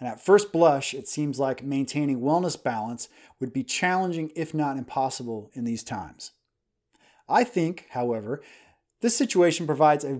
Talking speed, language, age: 155 wpm, English, 30-49